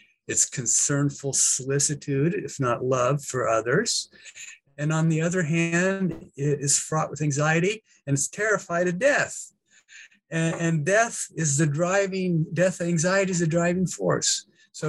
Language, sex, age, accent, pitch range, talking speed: English, male, 50-69, American, 130-170 Hz, 140 wpm